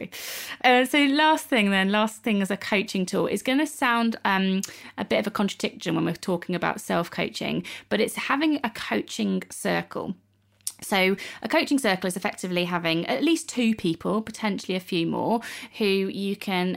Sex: female